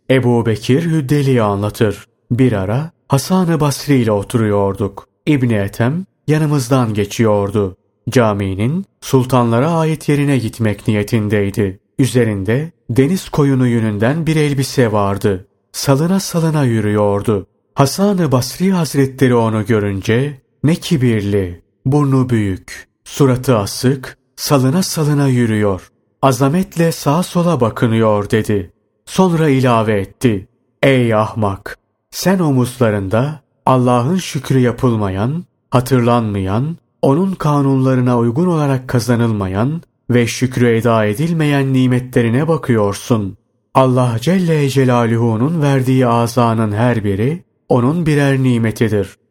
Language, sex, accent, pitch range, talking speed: Turkish, male, native, 110-140 Hz, 100 wpm